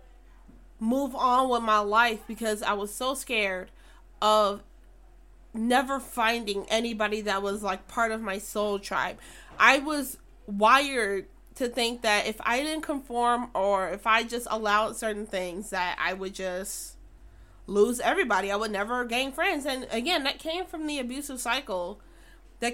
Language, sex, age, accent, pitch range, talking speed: English, female, 20-39, American, 210-265 Hz, 155 wpm